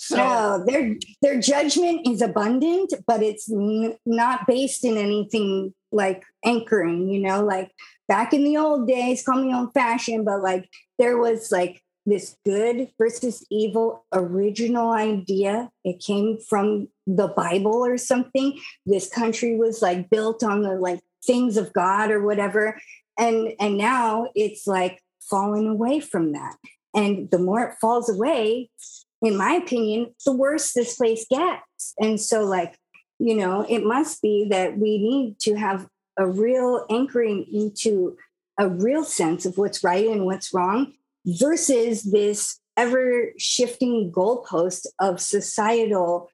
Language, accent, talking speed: English, American, 150 wpm